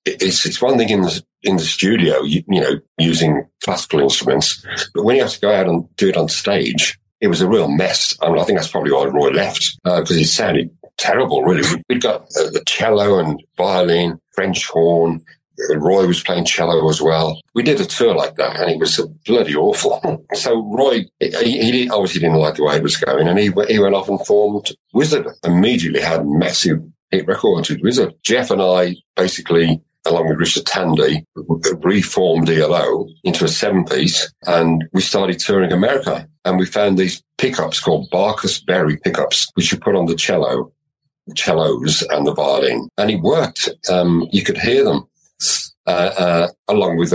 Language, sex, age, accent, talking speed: English, male, 50-69, British, 190 wpm